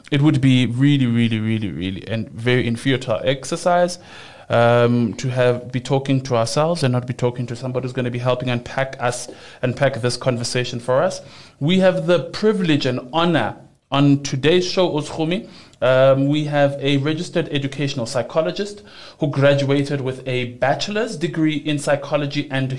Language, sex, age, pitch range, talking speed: English, male, 20-39, 130-160 Hz, 165 wpm